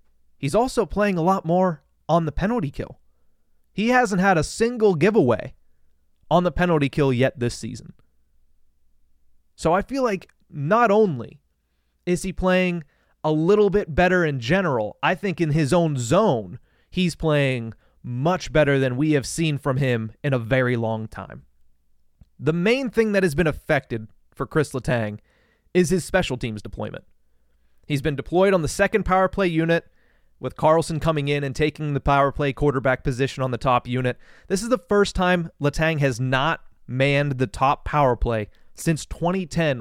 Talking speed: 170 wpm